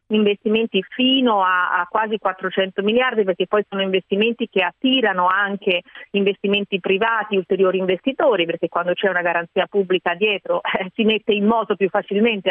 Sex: female